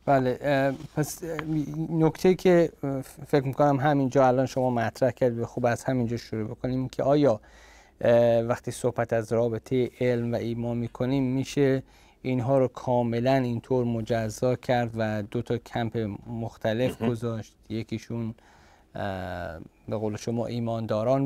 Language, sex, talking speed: Persian, male, 120 wpm